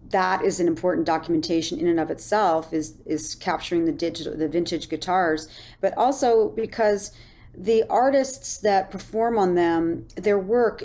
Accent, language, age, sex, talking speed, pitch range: American, English, 40-59, female, 155 wpm, 175-225 Hz